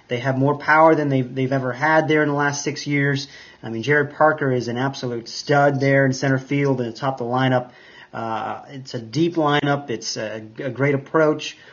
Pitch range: 130-155 Hz